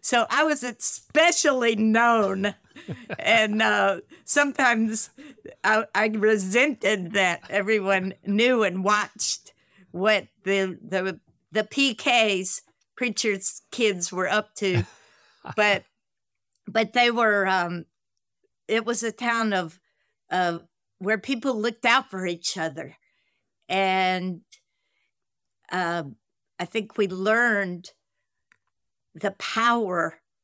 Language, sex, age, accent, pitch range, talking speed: English, female, 50-69, American, 185-235 Hz, 105 wpm